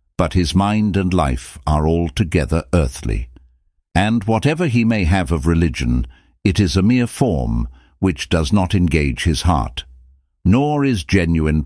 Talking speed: 150 wpm